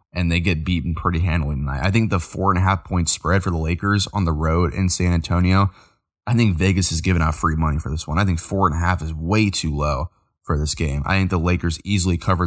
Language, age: English, 20-39